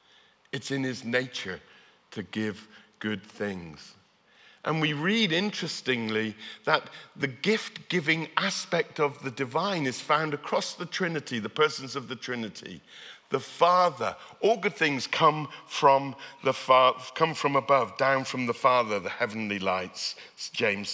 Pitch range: 125-180 Hz